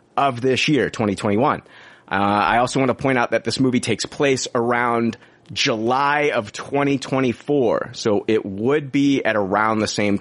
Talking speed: 165 wpm